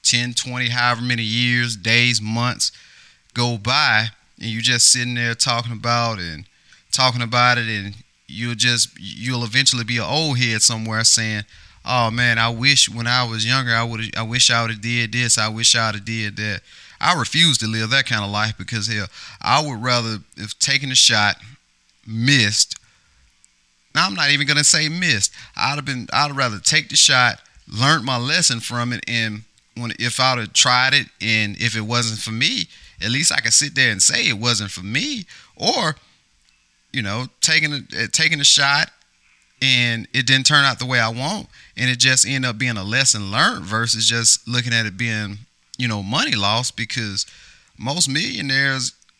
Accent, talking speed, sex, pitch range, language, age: American, 195 wpm, male, 110-130 Hz, English, 30-49